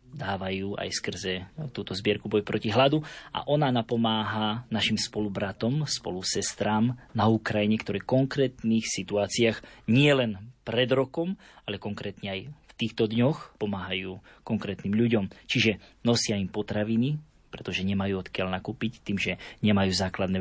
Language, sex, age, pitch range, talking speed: Slovak, male, 20-39, 100-120 Hz, 130 wpm